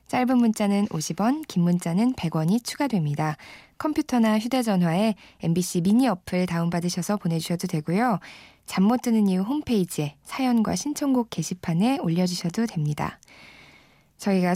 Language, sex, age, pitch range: Korean, female, 20-39, 170-220 Hz